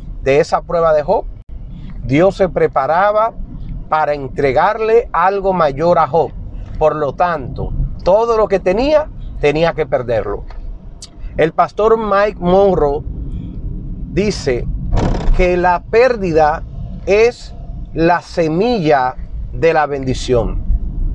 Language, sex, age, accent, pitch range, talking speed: Spanish, male, 40-59, American, 140-210 Hz, 110 wpm